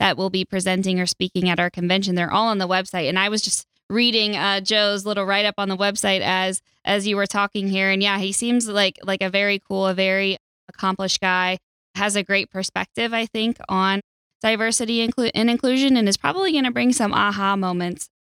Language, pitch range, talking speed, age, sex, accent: English, 185-205 Hz, 215 wpm, 10-29, female, American